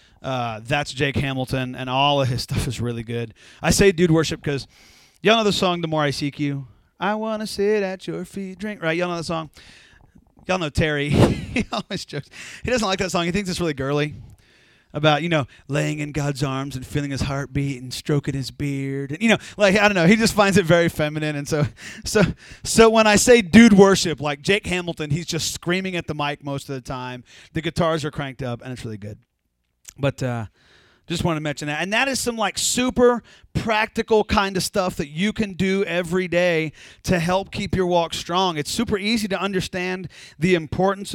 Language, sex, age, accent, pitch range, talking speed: English, male, 30-49, American, 145-195 Hz, 220 wpm